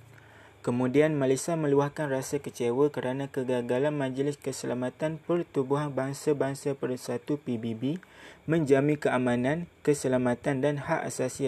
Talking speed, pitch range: 100 wpm, 125-150 Hz